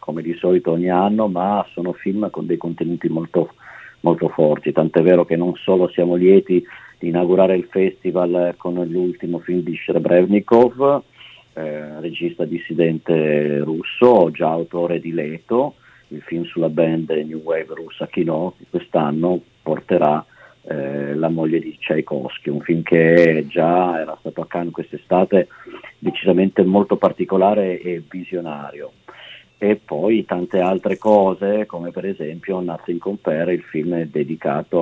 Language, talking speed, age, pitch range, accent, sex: Italian, 140 wpm, 50-69, 85-100 Hz, native, male